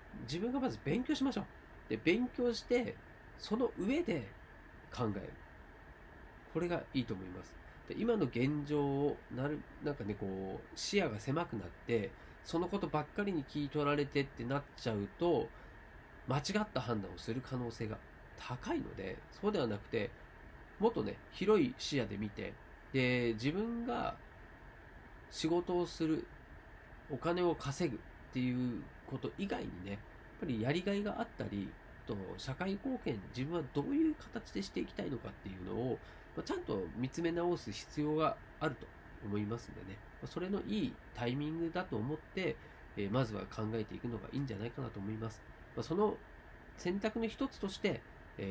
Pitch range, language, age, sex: 110-170 Hz, Japanese, 40-59, male